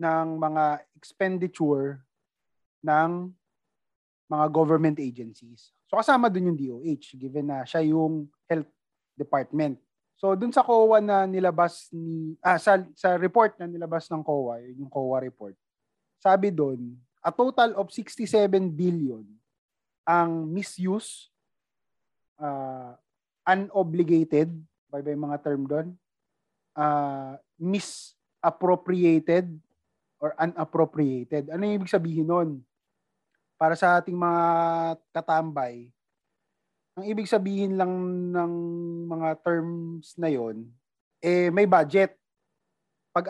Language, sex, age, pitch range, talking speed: Filipino, male, 20-39, 150-185 Hz, 110 wpm